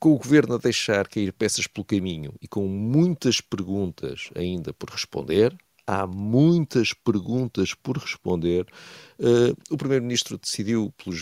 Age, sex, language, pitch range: 50-69, male, Portuguese, 100-155 Hz